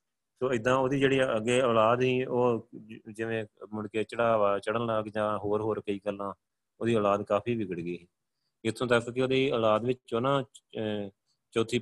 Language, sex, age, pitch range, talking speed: Punjabi, male, 30-49, 100-120 Hz, 160 wpm